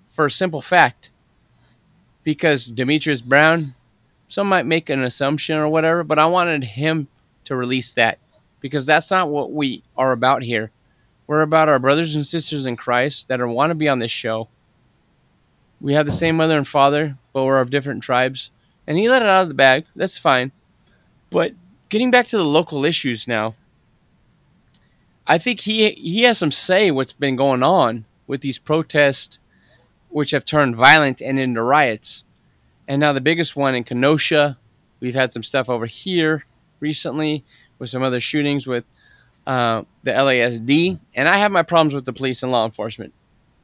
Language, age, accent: English, 20-39, American